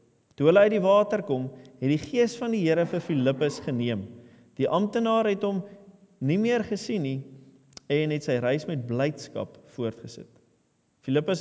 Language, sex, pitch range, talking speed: English, male, 130-195 Hz, 160 wpm